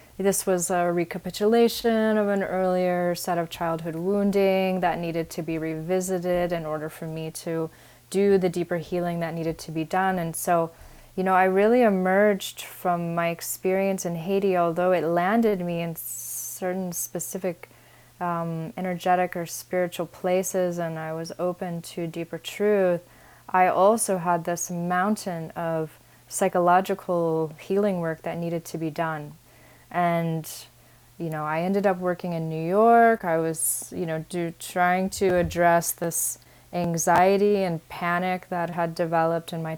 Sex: female